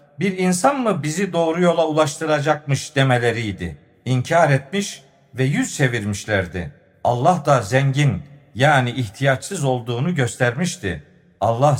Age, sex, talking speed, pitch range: 50-69, male, 105 wpm, 135-175 Hz